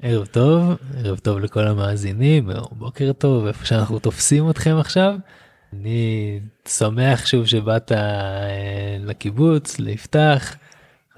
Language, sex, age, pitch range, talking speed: Hebrew, male, 20-39, 105-140 Hz, 100 wpm